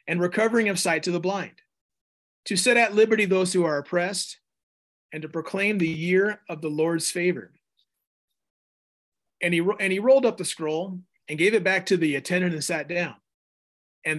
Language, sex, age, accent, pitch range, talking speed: English, male, 30-49, American, 160-210 Hz, 175 wpm